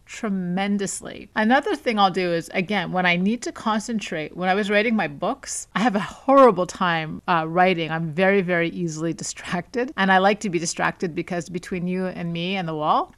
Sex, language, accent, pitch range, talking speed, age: female, English, American, 175-215 Hz, 200 wpm, 30-49